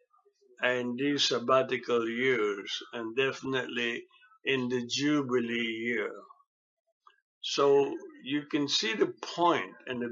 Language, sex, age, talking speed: English, male, 60-79, 105 wpm